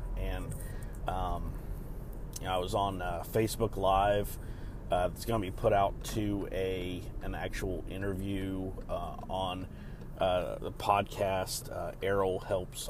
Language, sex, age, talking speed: English, male, 30-49, 140 wpm